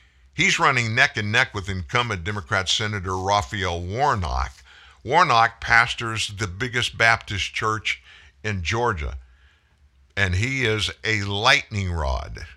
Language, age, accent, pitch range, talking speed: English, 50-69, American, 75-115 Hz, 120 wpm